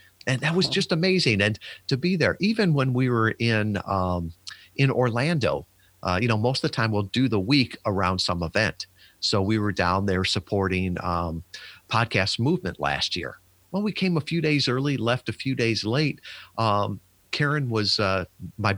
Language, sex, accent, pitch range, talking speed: English, male, American, 95-130 Hz, 190 wpm